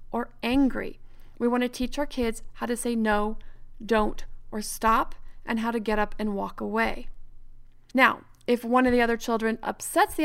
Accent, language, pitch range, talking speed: American, English, 230-275 Hz, 180 wpm